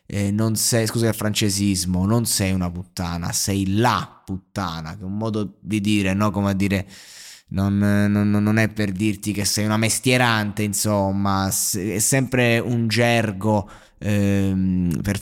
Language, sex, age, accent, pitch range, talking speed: Italian, male, 20-39, native, 100-115 Hz, 155 wpm